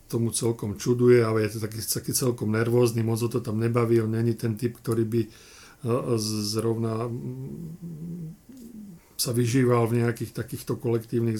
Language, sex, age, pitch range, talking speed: Slovak, male, 40-59, 115-145 Hz, 145 wpm